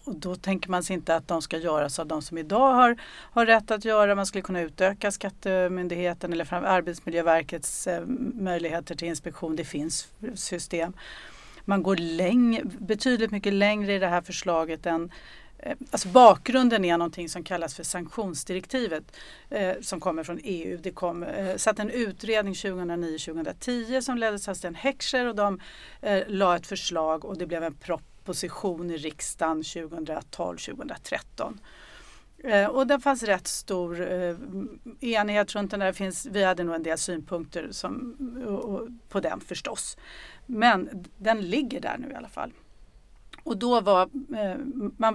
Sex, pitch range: female, 170-225 Hz